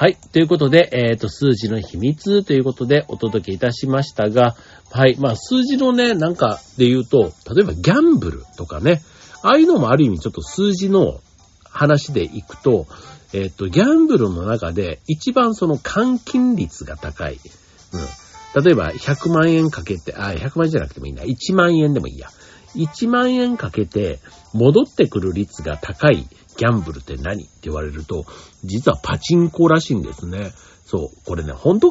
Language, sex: Japanese, male